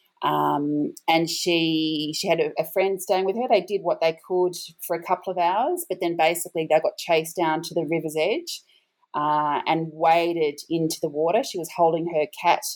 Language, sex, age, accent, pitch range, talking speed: English, female, 30-49, Australian, 155-180 Hz, 200 wpm